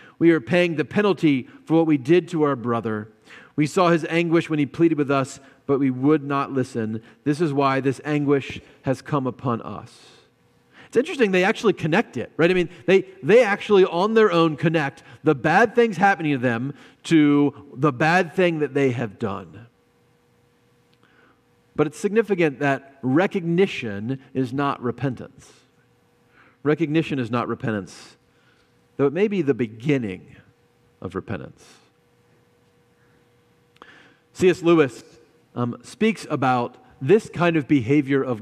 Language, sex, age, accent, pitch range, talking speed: English, male, 40-59, American, 120-165 Hz, 150 wpm